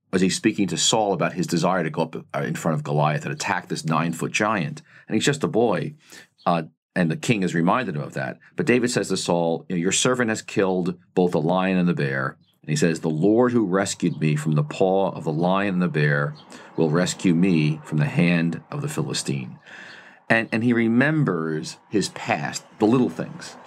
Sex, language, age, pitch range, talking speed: male, English, 40-59, 80-100 Hz, 215 wpm